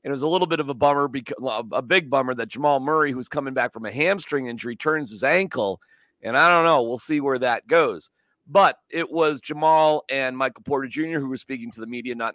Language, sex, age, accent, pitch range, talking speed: English, male, 50-69, American, 135-185 Hz, 240 wpm